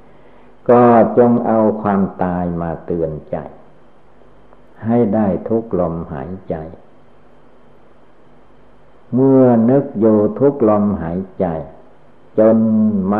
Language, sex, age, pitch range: Thai, male, 60-79, 85-110 Hz